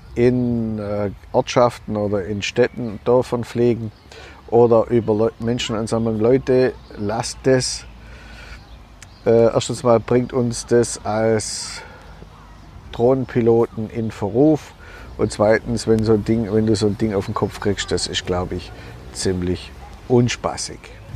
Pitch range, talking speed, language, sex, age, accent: 100-120 Hz, 125 wpm, German, male, 50-69, German